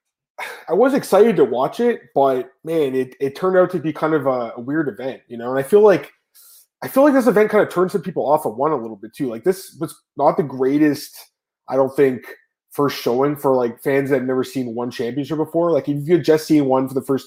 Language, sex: English, male